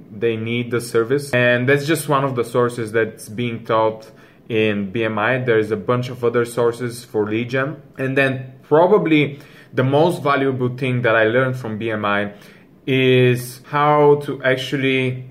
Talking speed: 155 wpm